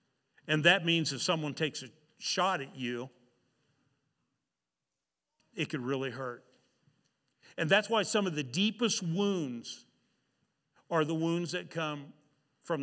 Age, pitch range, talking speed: 50-69, 135-175 Hz, 130 wpm